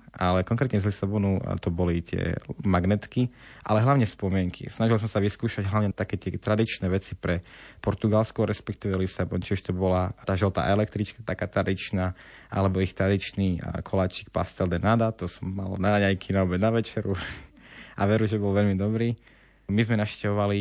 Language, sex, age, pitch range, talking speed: Slovak, male, 20-39, 95-110 Hz, 165 wpm